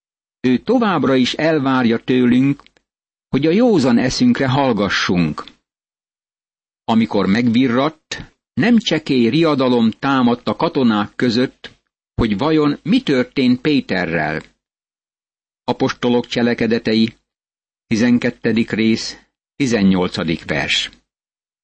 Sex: male